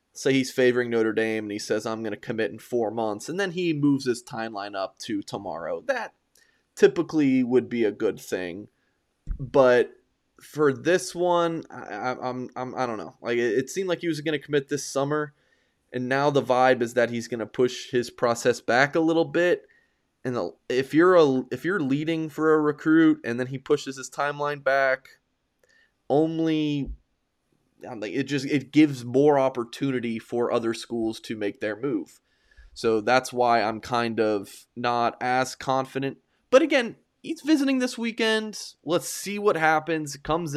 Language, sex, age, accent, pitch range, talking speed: English, male, 20-39, American, 120-155 Hz, 180 wpm